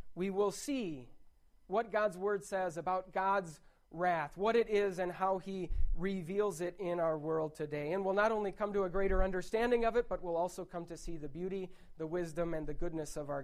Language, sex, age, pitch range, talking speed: English, male, 30-49, 155-195 Hz, 215 wpm